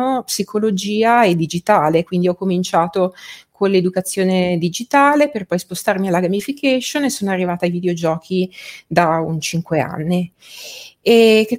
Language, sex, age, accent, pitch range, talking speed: Italian, female, 30-49, native, 175-225 Hz, 130 wpm